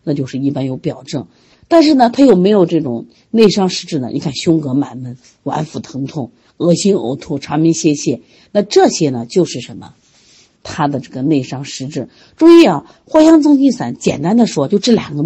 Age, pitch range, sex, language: 50-69, 140-210 Hz, female, Chinese